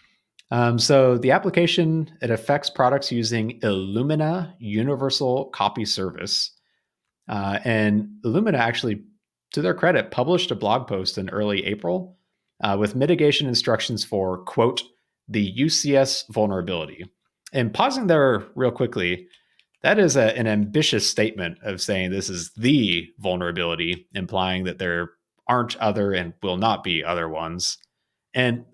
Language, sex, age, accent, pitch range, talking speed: English, male, 30-49, American, 95-130 Hz, 135 wpm